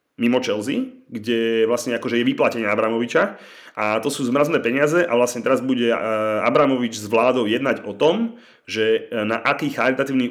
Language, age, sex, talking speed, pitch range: Slovak, 30-49, male, 155 wpm, 105-130 Hz